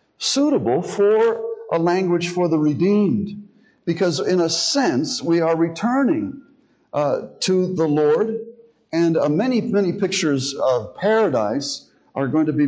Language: English